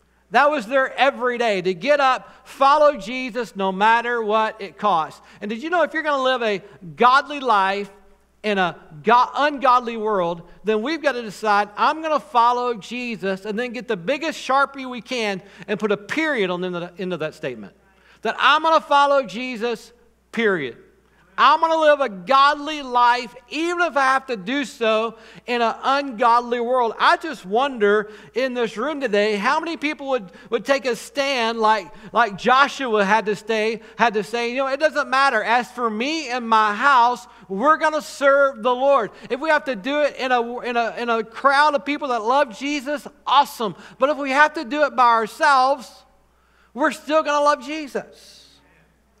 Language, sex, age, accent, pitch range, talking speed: English, male, 50-69, American, 215-280 Hz, 195 wpm